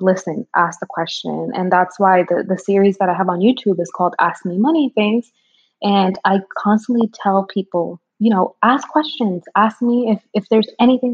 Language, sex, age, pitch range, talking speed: English, female, 20-39, 185-220 Hz, 195 wpm